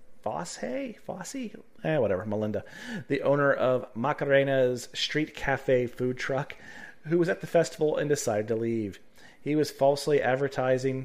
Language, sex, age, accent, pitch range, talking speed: English, male, 30-49, American, 130-175 Hz, 145 wpm